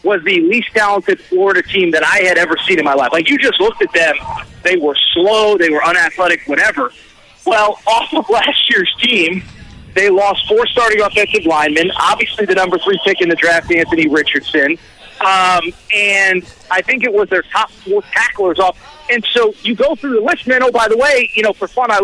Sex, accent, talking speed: male, American, 210 wpm